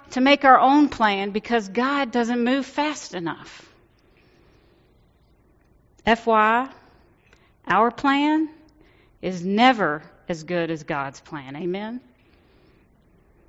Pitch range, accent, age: 180-265 Hz, American, 40-59